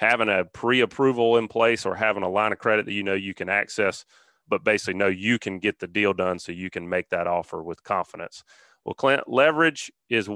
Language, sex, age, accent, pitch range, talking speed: English, male, 30-49, American, 105-145 Hz, 220 wpm